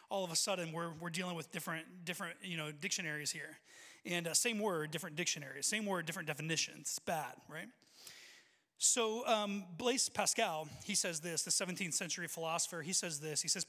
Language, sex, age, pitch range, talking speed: English, male, 30-49, 170-230 Hz, 185 wpm